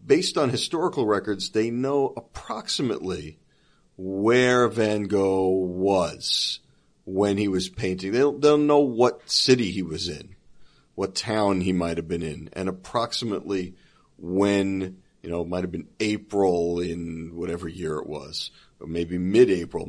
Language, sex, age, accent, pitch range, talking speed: English, male, 40-59, American, 95-115 Hz, 145 wpm